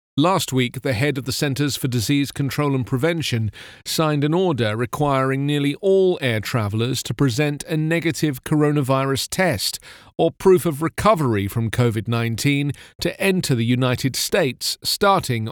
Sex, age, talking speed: male, 40-59, 145 wpm